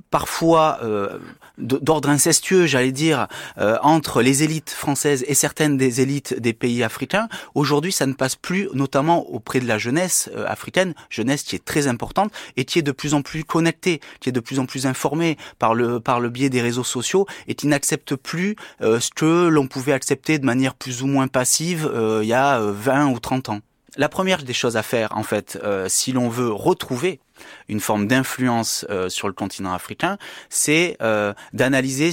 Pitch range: 115-155 Hz